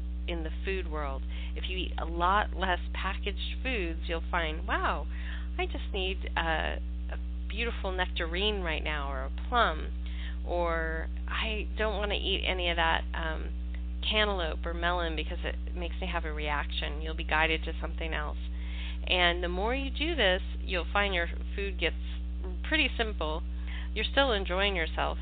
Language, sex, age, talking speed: English, female, 30-49, 165 wpm